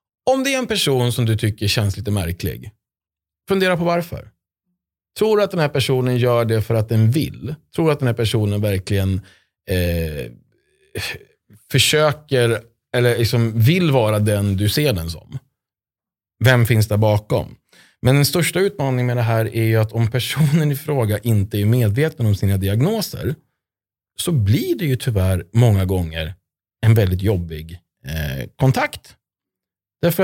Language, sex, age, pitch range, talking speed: Swedish, male, 30-49, 100-135 Hz, 155 wpm